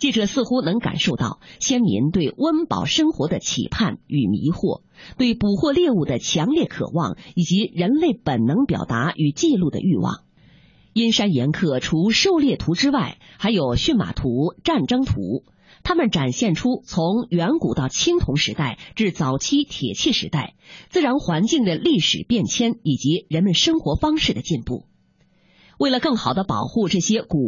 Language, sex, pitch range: Chinese, female, 165-275 Hz